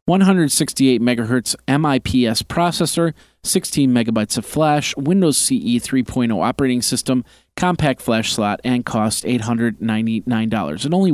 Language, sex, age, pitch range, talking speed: English, male, 40-59, 115-145 Hz, 115 wpm